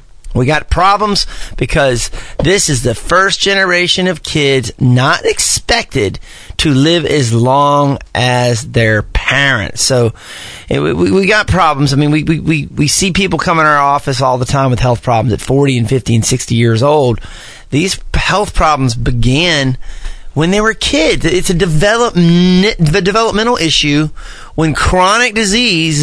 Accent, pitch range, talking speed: American, 125-185 Hz, 150 wpm